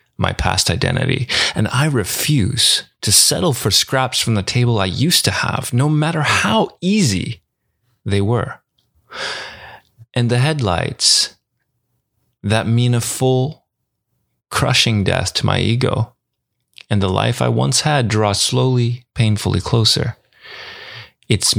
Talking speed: 130 wpm